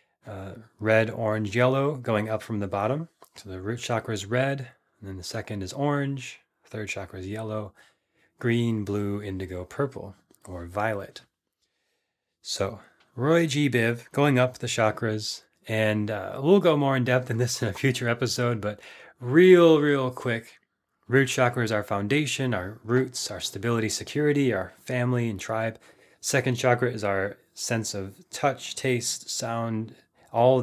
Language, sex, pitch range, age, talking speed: English, male, 105-130 Hz, 30-49, 160 wpm